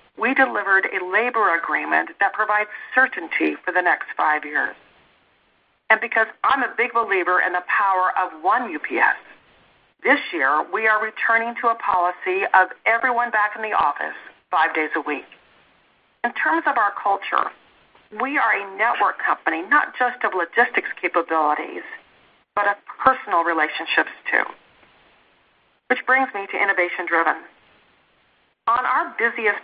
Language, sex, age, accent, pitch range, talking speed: English, female, 40-59, American, 185-240 Hz, 145 wpm